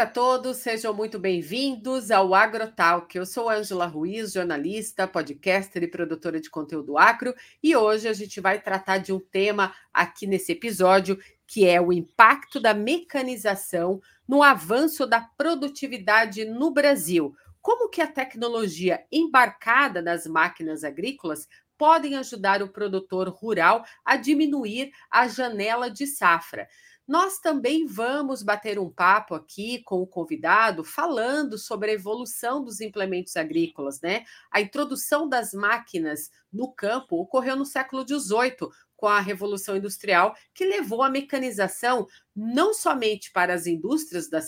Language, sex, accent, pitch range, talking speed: Portuguese, female, Brazilian, 190-270 Hz, 140 wpm